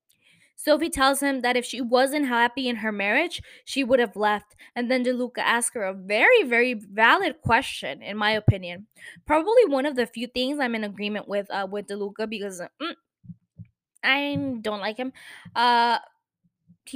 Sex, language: female, English